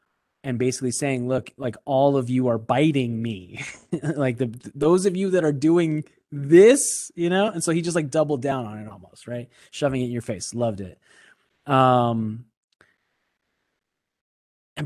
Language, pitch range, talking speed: English, 125-160 Hz, 170 wpm